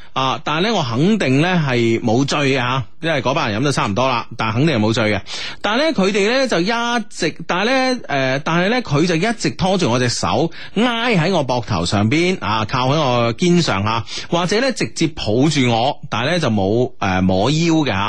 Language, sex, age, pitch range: Chinese, male, 30-49, 115-180 Hz